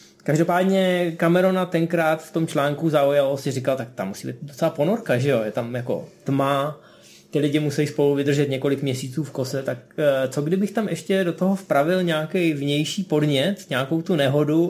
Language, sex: Czech, male